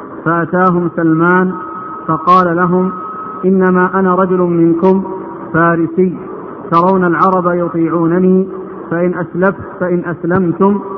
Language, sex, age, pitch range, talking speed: Arabic, male, 50-69, 170-190 Hz, 85 wpm